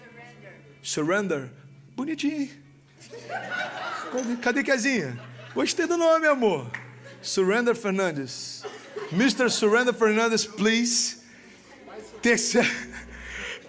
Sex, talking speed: male, 65 wpm